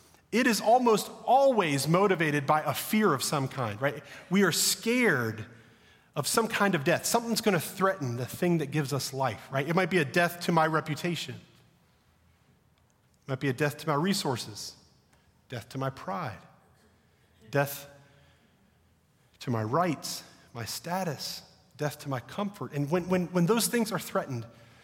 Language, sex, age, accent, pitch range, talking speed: English, male, 40-59, American, 125-180 Hz, 165 wpm